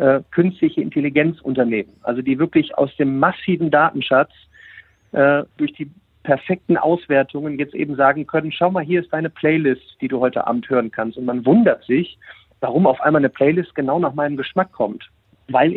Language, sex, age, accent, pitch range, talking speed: German, male, 50-69, German, 130-160 Hz, 170 wpm